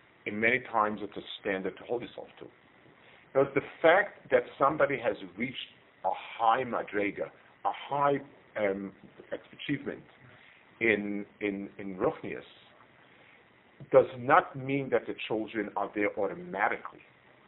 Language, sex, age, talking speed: English, male, 50-69, 125 wpm